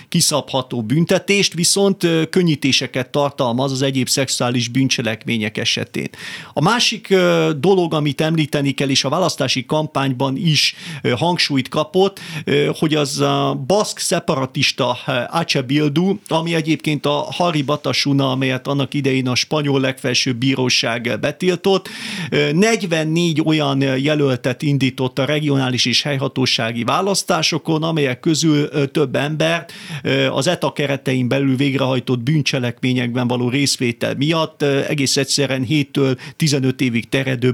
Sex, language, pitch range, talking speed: male, Hungarian, 130-160 Hz, 110 wpm